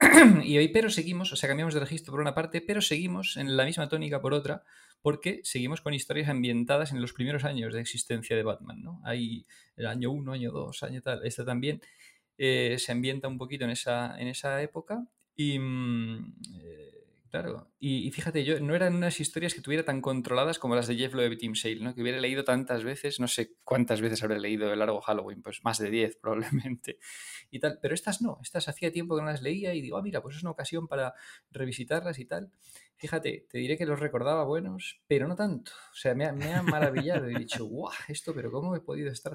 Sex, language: male, Spanish